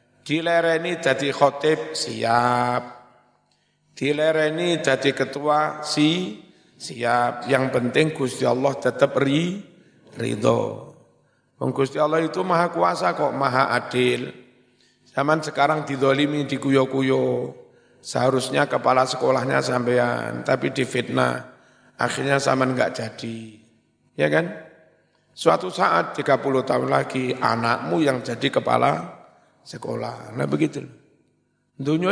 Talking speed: 100 wpm